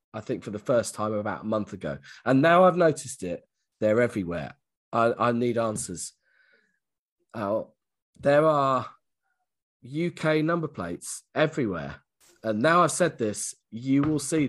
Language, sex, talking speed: English, male, 150 wpm